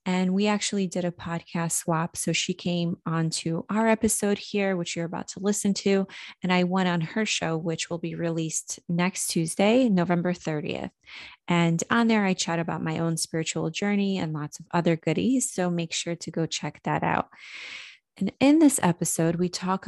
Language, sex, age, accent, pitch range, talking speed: English, female, 30-49, American, 165-195 Hz, 190 wpm